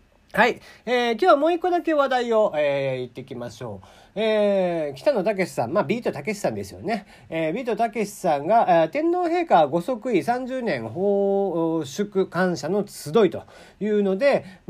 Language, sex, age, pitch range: Japanese, male, 40-59, 155-240 Hz